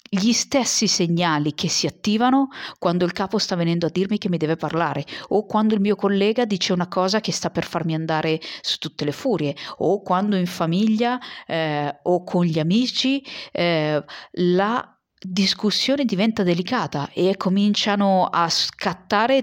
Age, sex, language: 40-59, female, Italian